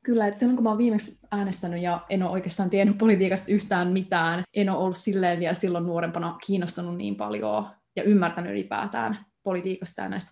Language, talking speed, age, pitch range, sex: Finnish, 185 wpm, 20-39, 180-205 Hz, female